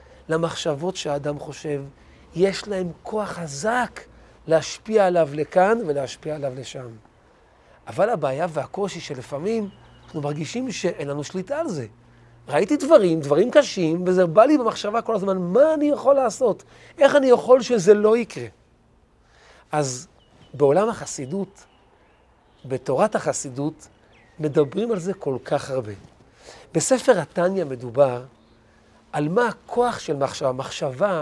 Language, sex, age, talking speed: Hebrew, male, 40-59, 125 wpm